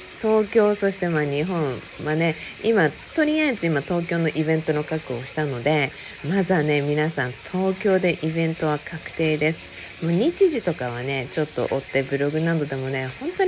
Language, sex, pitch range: Japanese, female, 140-205 Hz